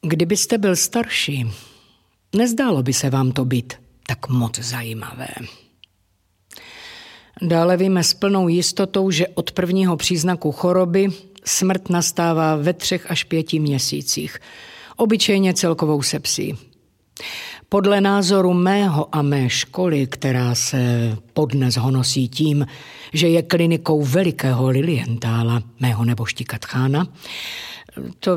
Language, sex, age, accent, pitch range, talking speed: Czech, female, 50-69, native, 135-190 Hz, 110 wpm